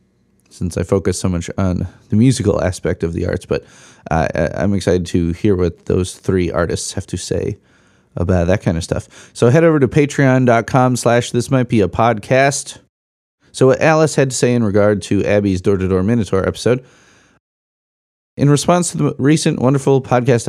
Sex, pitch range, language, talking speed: male, 95-130 Hz, English, 175 wpm